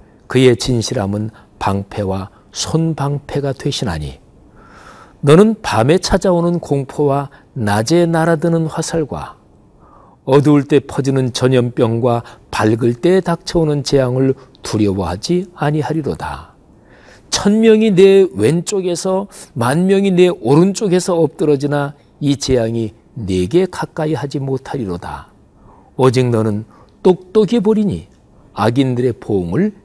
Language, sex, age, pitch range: Korean, male, 40-59, 120-165 Hz